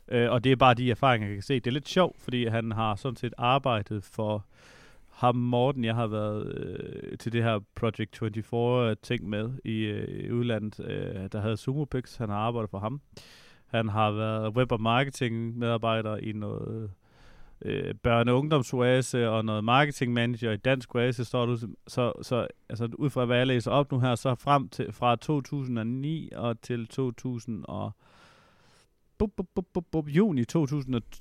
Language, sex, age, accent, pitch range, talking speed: Danish, male, 30-49, native, 110-130 Hz, 165 wpm